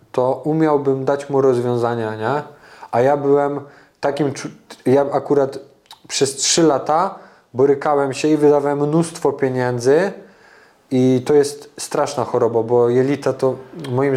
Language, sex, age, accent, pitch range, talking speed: Polish, male, 20-39, native, 120-140 Hz, 125 wpm